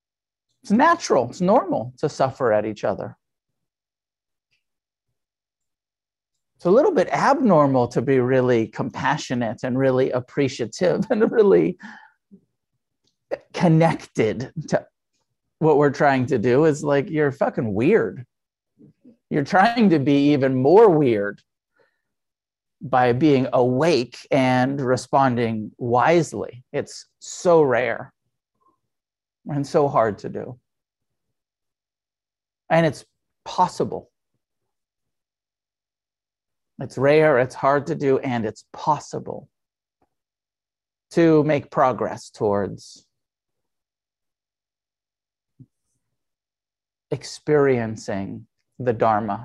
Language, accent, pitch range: English, American, 100-145 Hz